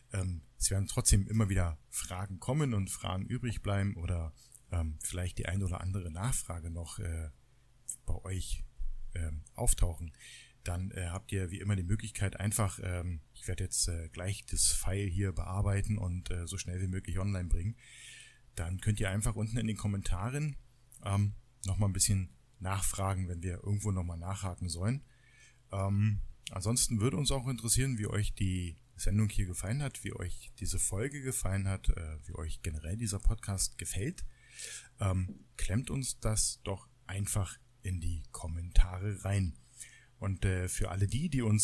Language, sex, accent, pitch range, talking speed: German, male, German, 90-115 Hz, 165 wpm